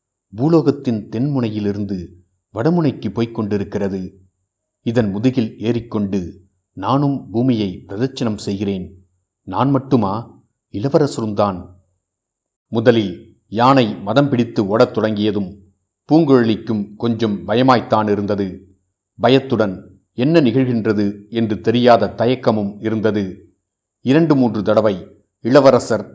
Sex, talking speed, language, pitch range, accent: male, 80 wpm, Tamil, 100-120 Hz, native